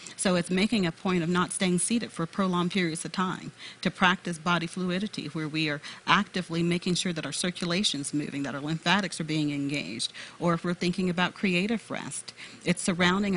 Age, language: 40-59, English